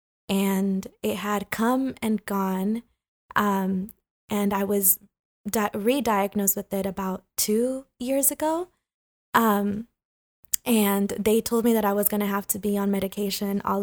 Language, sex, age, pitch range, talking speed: English, female, 20-39, 195-215 Hz, 145 wpm